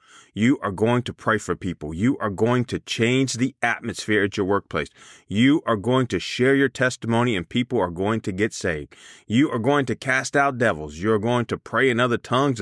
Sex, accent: male, American